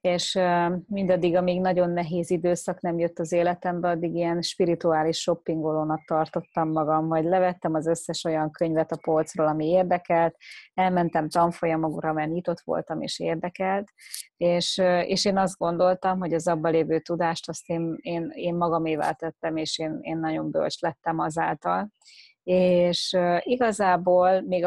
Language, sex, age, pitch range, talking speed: Hungarian, female, 20-39, 165-180 Hz, 145 wpm